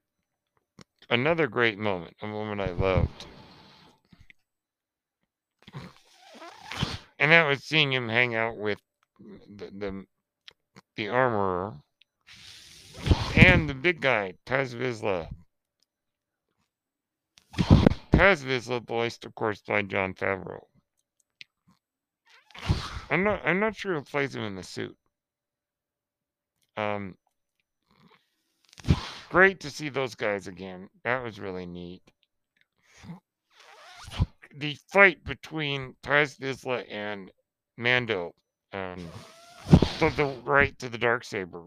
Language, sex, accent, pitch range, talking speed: English, male, American, 105-145 Hz, 100 wpm